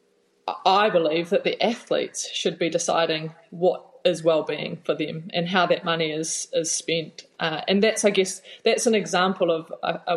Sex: female